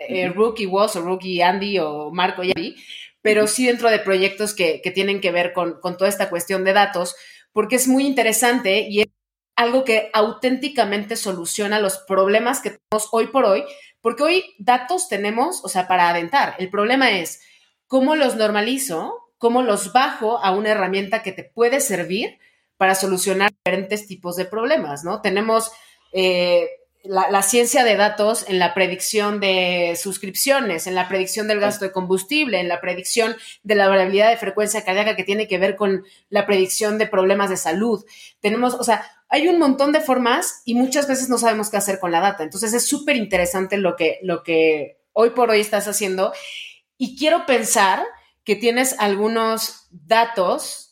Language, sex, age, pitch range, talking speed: Spanish, female, 30-49, 190-235 Hz, 180 wpm